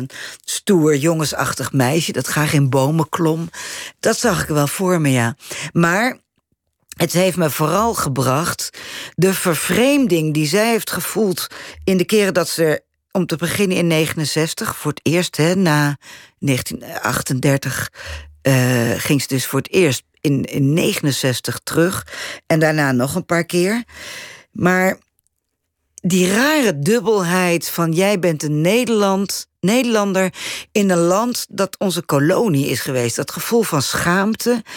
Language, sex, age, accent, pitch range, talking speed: Dutch, female, 50-69, Dutch, 150-195 Hz, 140 wpm